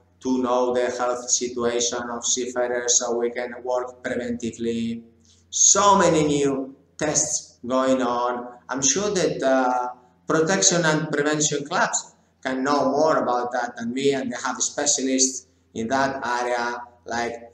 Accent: Spanish